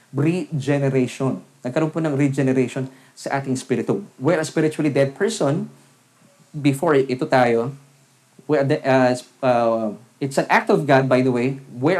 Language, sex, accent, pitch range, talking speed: English, male, Filipino, 130-175 Hz, 150 wpm